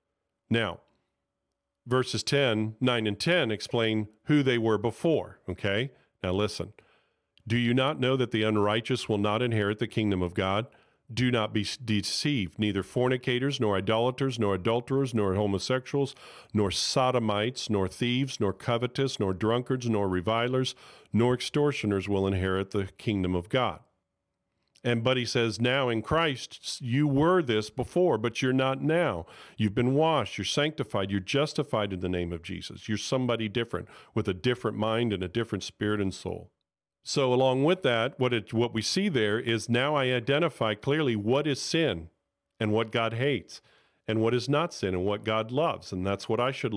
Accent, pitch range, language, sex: American, 100-130 Hz, English, male